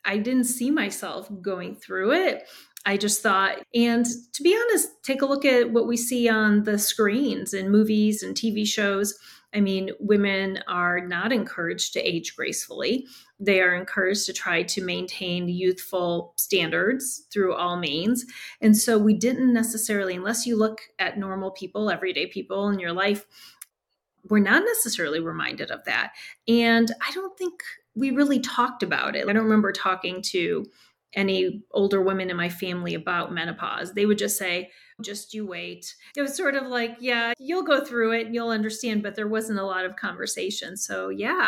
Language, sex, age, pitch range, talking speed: English, female, 30-49, 190-235 Hz, 180 wpm